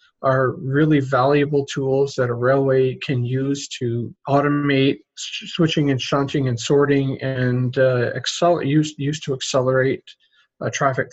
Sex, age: male, 40-59